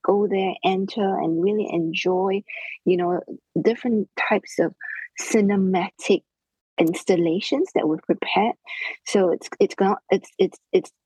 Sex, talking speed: female, 110 wpm